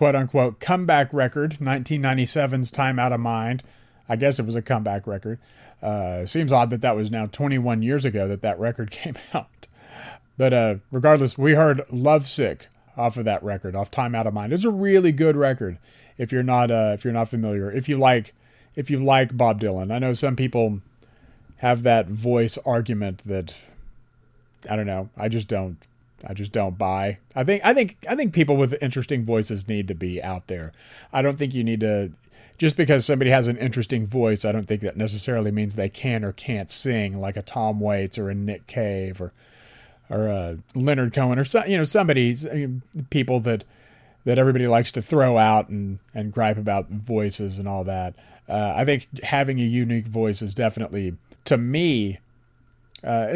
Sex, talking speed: male, 195 wpm